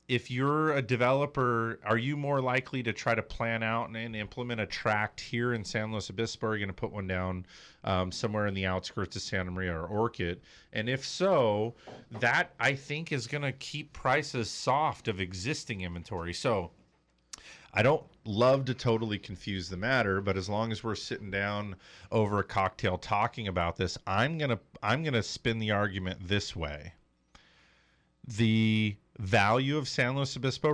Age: 40-59